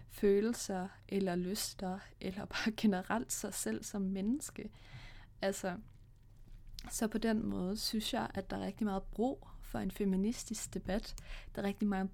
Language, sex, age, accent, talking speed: Danish, female, 20-39, native, 155 wpm